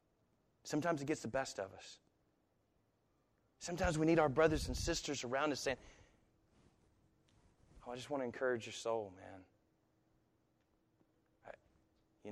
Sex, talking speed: male, 125 wpm